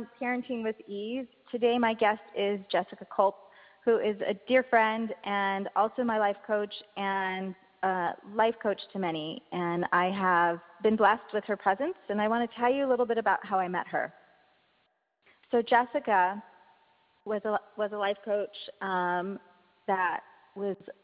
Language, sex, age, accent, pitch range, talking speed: English, female, 30-49, American, 175-210 Hz, 165 wpm